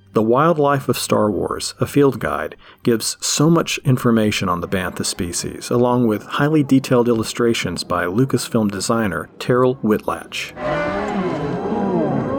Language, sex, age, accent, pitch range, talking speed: English, male, 40-59, American, 100-125 Hz, 125 wpm